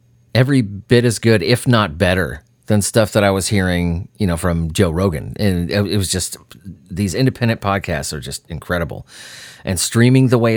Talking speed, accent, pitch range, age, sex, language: 180 wpm, American, 90-115 Hz, 30-49, male, English